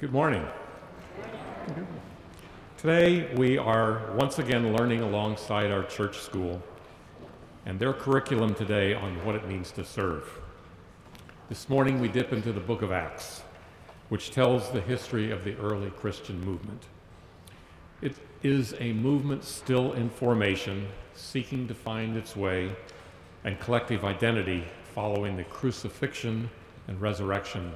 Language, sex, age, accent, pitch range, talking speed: English, male, 50-69, American, 95-115 Hz, 130 wpm